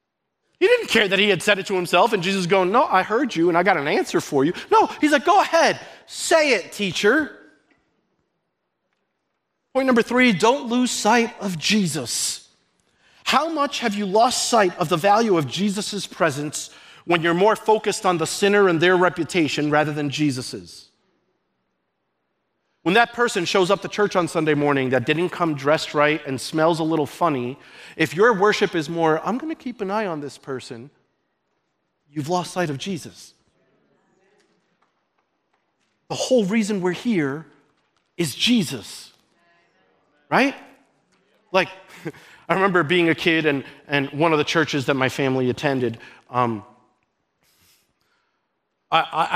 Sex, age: male, 30-49